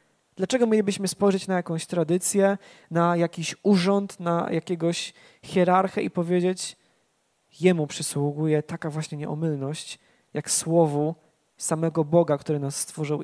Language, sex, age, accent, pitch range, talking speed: Polish, male, 20-39, native, 155-190 Hz, 120 wpm